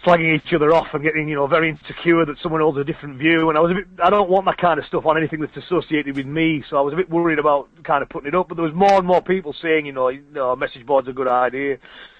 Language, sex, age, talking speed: English, male, 30-49, 310 wpm